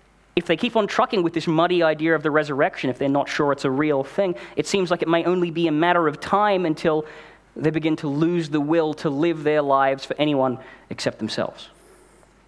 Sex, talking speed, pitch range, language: male, 220 wpm, 130-170 Hz, English